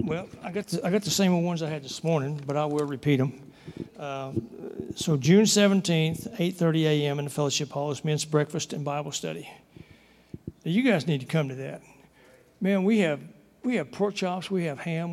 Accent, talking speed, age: American, 190 wpm, 60-79